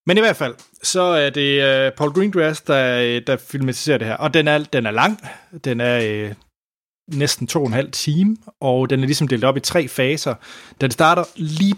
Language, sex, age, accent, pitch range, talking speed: Danish, male, 30-49, native, 115-140 Hz, 210 wpm